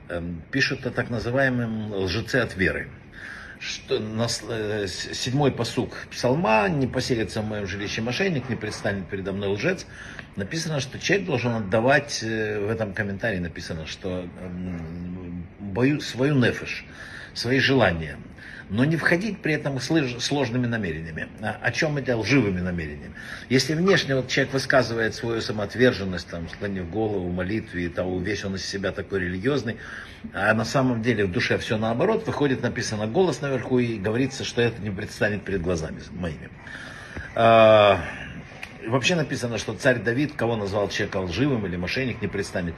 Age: 60-79